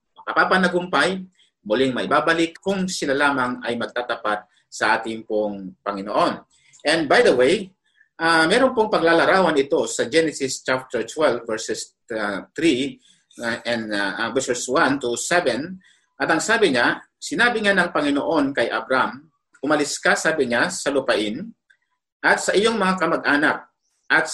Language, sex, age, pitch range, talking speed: Filipino, male, 50-69, 135-185 Hz, 145 wpm